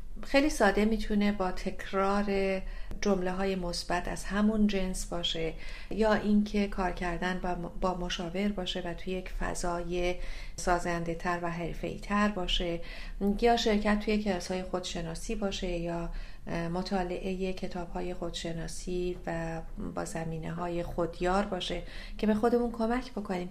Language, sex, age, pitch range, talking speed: Persian, female, 40-59, 175-210 Hz, 125 wpm